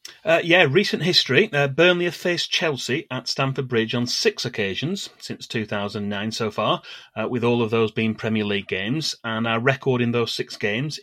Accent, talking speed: British, 190 wpm